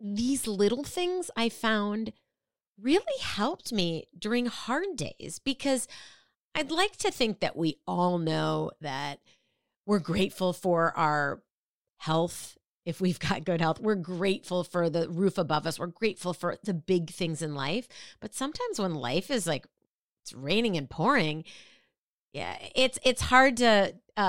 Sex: female